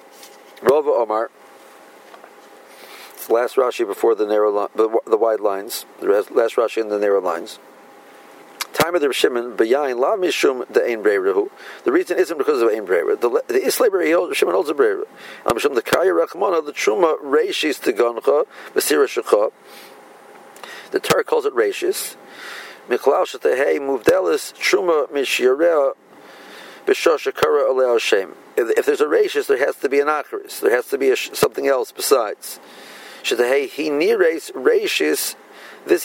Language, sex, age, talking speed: English, male, 50-69, 160 wpm